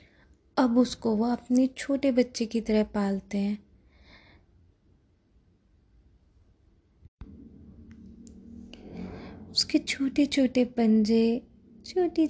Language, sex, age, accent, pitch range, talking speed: Hindi, female, 20-39, native, 210-245 Hz, 75 wpm